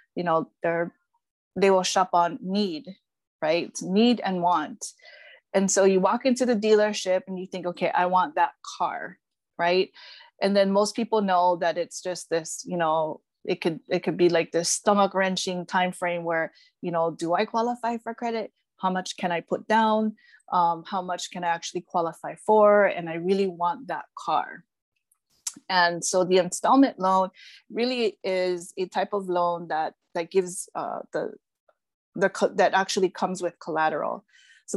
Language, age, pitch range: English, 20-39, 175-205 Hz